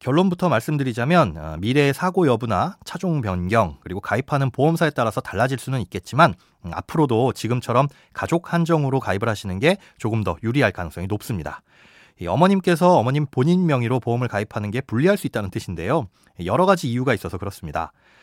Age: 30-49